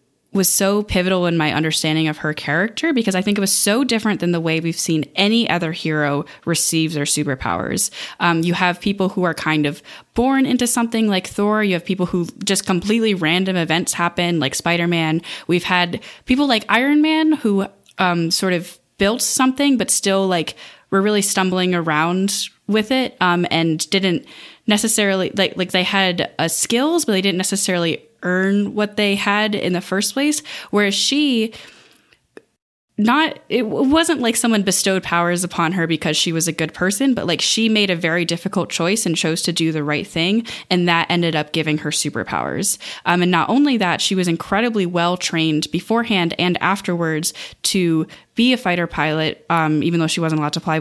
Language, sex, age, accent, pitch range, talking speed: English, female, 10-29, American, 165-205 Hz, 190 wpm